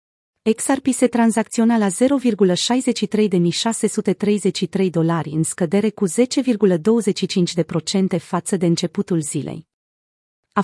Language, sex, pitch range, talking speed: Romanian, female, 175-220 Hz, 90 wpm